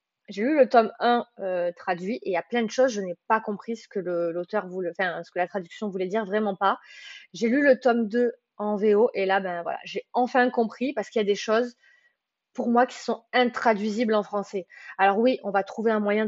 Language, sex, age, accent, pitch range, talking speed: French, female, 20-39, French, 195-240 Hz, 240 wpm